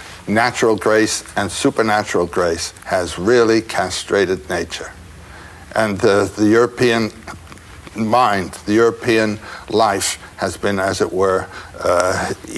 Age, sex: 60-79, male